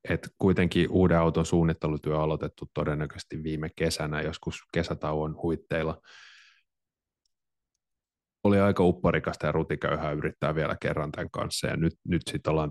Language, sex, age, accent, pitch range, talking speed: Finnish, male, 30-49, native, 80-100 Hz, 130 wpm